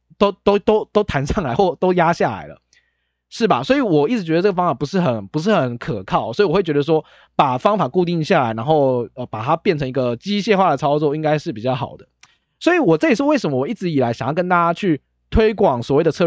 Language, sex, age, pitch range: Chinese, male, 20-39, 130-205 Hz